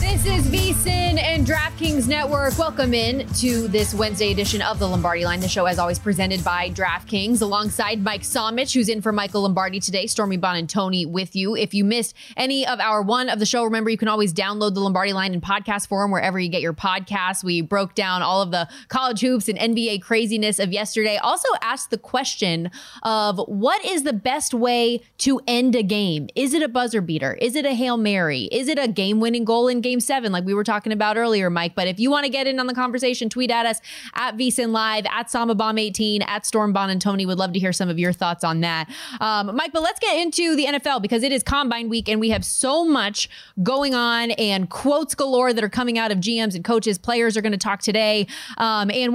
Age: 20-39